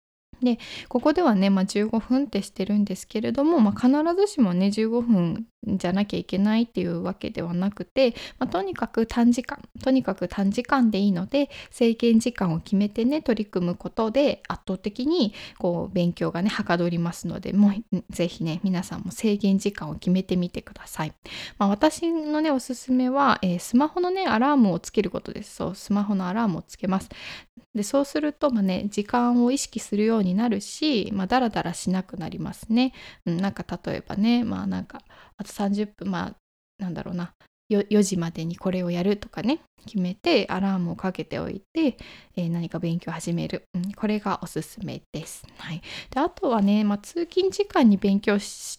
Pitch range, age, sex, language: 185-245 Hz, 10-29, female, Japanese